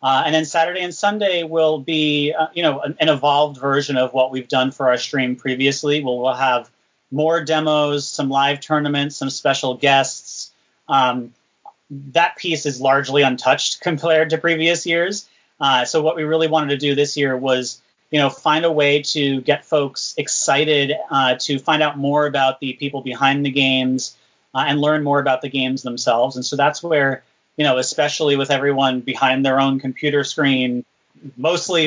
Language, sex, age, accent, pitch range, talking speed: English, male, 30-49, American, 130-150 Hz, 185 wpm